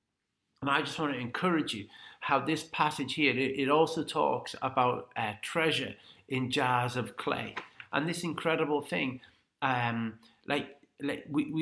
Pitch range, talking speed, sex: 120-150 Hz, 150 wpm, male